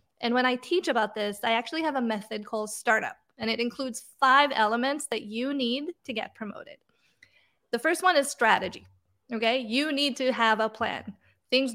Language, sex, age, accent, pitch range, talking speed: English, female, 30-49, American, 215-270 Hz, 190 wpm